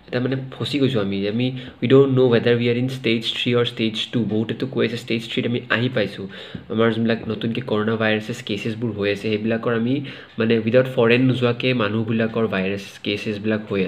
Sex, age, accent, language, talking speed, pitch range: male, 30-49, native, Hindi, 130 wpm, 110-130 Hz